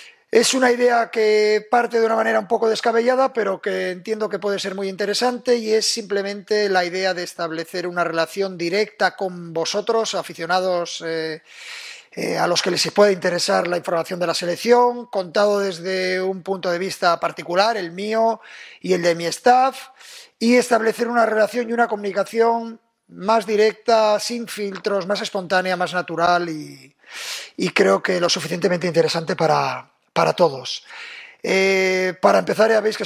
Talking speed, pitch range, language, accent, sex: 165 wpm, 180-225 Hz, Spanish, Spanish, male